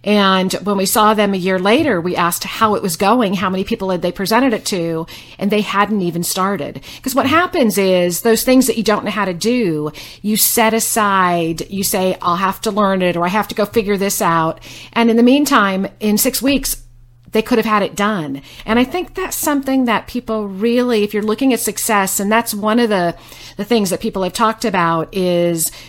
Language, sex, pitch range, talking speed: English, female, 175-225 Hz, 225 wpm